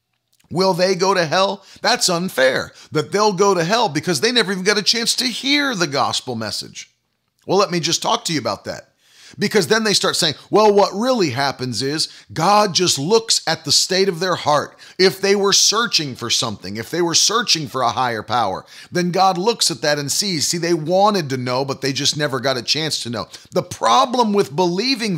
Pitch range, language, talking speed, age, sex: 150-205 Hz, English, 215 wpm, 40-59, male